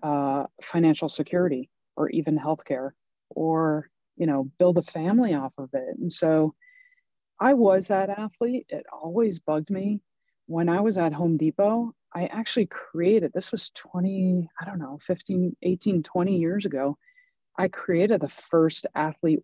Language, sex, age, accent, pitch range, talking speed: English, female, 30-49, American, 145-180 Hz, 150 wpm